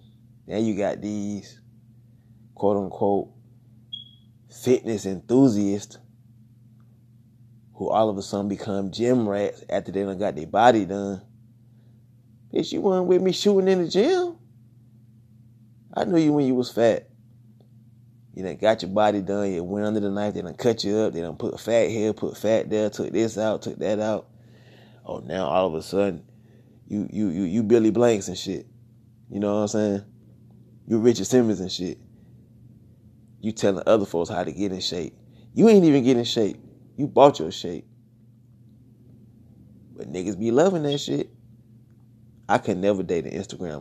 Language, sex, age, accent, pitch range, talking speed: English, male, 20-39, American, 105-120 Hz, 170 wpm